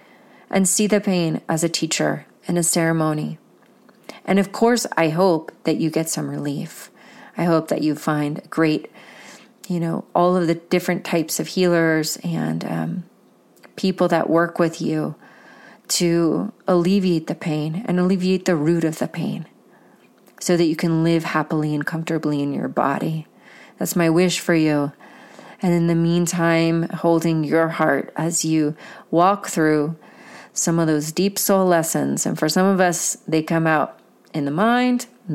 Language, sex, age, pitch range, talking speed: English, female, 30-49, 155-195 Hz, 165 wpm